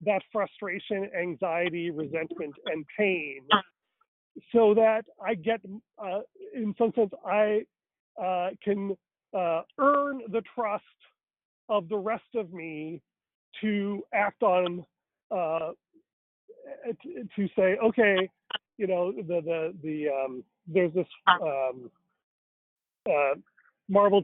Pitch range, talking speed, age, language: 175-220 Hz, 110 wpm, 40-59, English